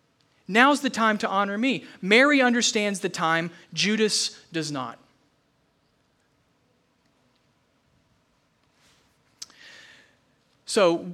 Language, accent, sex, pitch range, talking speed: English, American, male, 155-190 Hz, 75 wpm